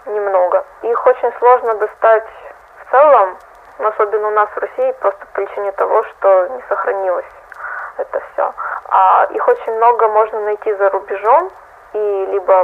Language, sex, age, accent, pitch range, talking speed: Russian, female, 20-39, native, 195-230 Hz, 145 wpm